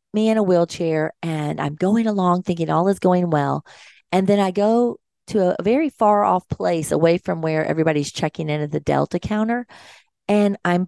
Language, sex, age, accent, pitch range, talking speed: English, female, 40-59, American, 150-180 Hz, 195 wpm